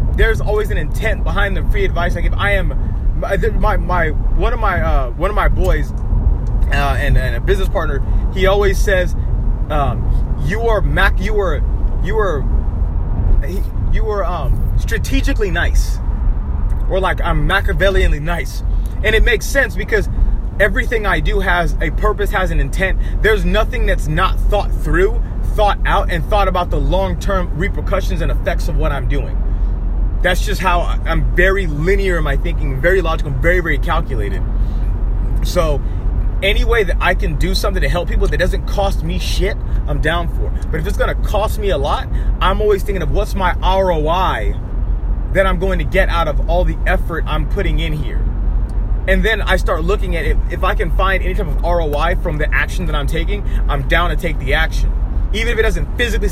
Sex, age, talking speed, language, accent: male, 30-49, 190 wpm, English, American